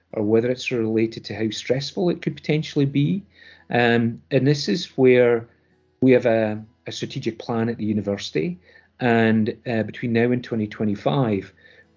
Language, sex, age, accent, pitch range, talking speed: English, male, 40-59, British, 105-130 Hz, 155 wpm